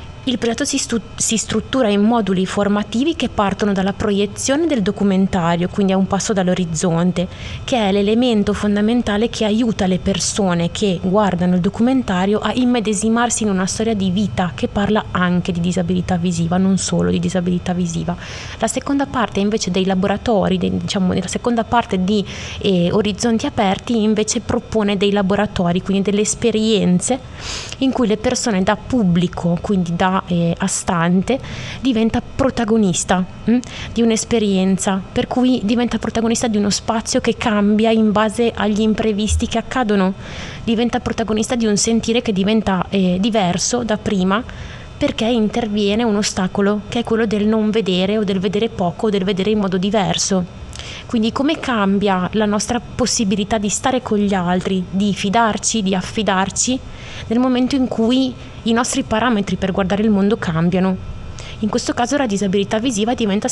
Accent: native